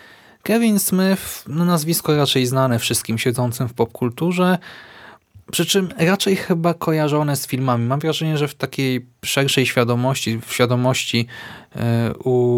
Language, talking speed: Polish, 130 wpm